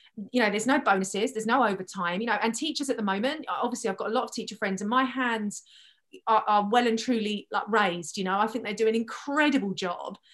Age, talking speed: 30-49, 245 wpm